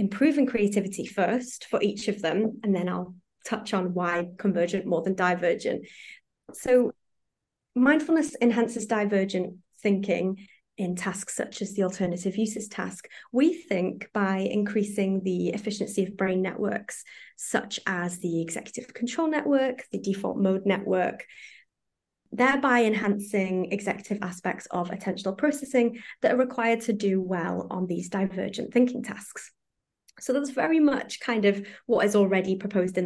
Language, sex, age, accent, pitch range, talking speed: English, female, 20-39, British, 190-235 Hz, 140 wpm